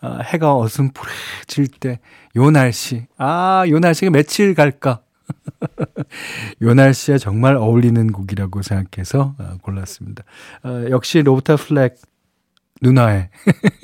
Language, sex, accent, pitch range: Korean, male, native, 110-145 Hz